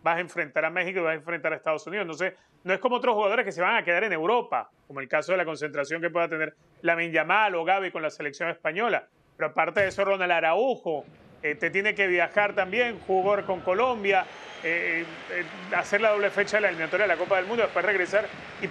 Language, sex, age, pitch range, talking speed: Spanish, male, 30-49, 165-215 Hz, 240 wpm